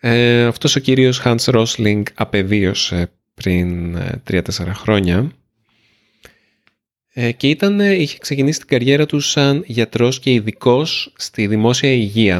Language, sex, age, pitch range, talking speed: Greek, male, 30-49, 95-120 Hz, 110 wpm